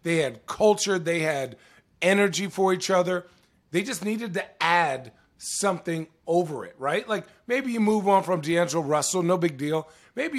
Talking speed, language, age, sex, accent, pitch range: 175 wpm, English, 40-59, male, American, 170-205 Hz